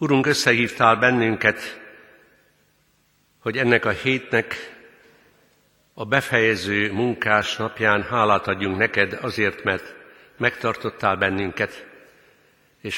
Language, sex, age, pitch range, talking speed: Hungarian, male, 60-79, 100-125 Hz, 90 wpm